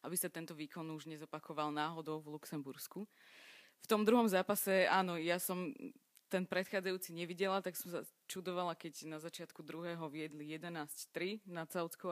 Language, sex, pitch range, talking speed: Slovak, female, 155-185 Hz, 155 wpm